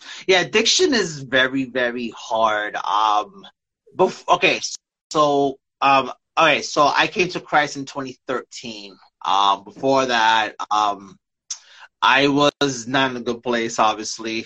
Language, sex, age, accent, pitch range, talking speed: English, male, 30-49, American, 115-140 Hz, 135 wpm